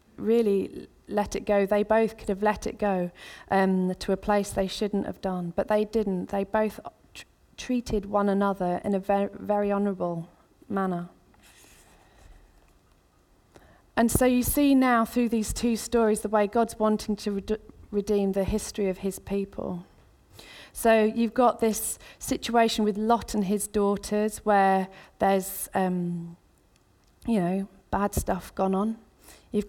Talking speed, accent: 150 wpm, British